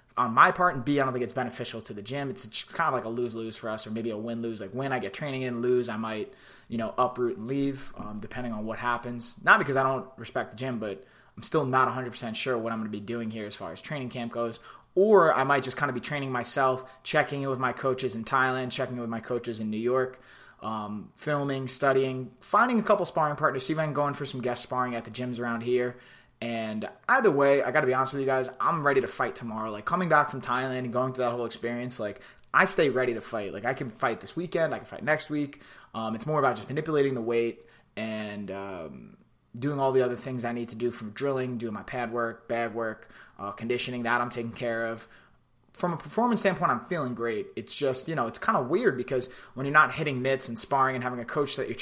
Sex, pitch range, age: male, 115-135 Hz, 20-39